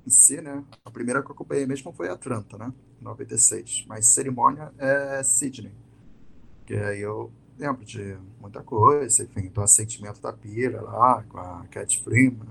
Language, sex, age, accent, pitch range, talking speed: Portuguese, male, 20-39, Brazilian, 105-130 Hz, 170 wpm